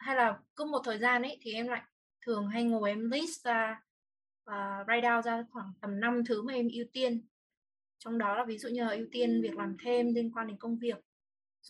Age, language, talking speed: 20-39, Vietnamese, 230 wpm